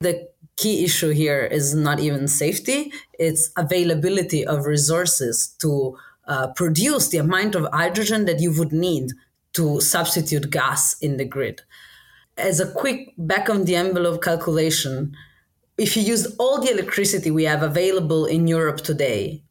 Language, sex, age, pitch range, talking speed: English, female, 20-39, 155-205 Hz, 150 wpm